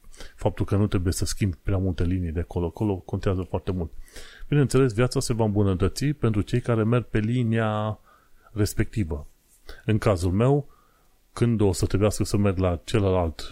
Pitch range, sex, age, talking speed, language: 95-115 Hz, male, 30-49, 165 wpm, Romanian